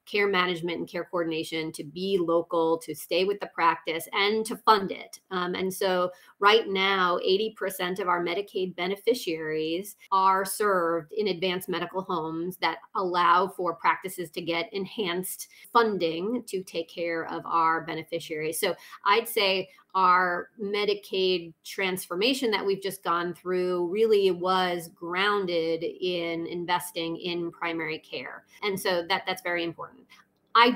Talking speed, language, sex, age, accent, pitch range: 140 wpm, English, female, 30-49, American, 175-205 Hz